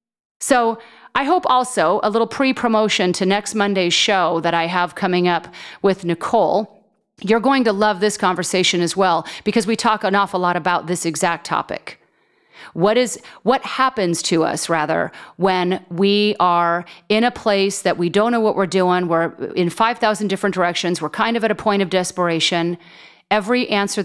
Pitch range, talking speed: 175-215 Hz, 175 wpm